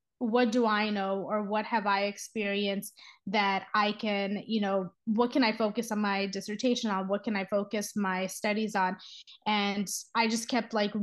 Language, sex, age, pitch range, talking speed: English, female, 20-39, 200-230 Hz, 185 wpm